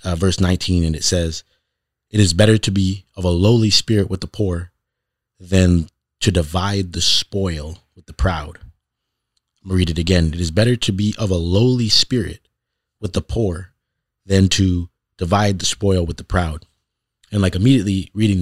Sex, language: male, English